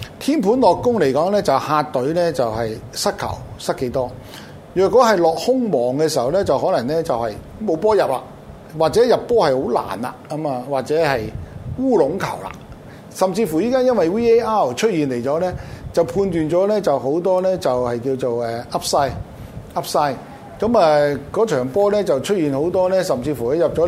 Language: Chinese